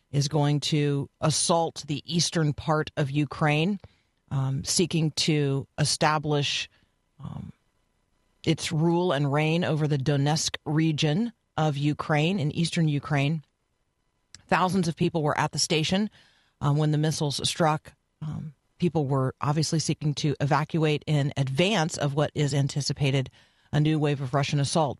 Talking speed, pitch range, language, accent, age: 140 wpm, 140-160 Hz, English, American, 40-59